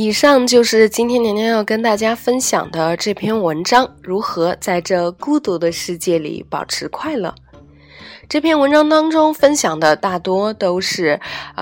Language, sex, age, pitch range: Chinese, female, 20-39, 165-225 Hz